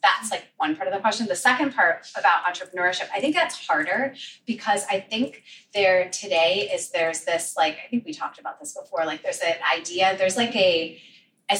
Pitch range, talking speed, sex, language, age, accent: 180-255 Hz, 205 wpm, female, English, 30-49, American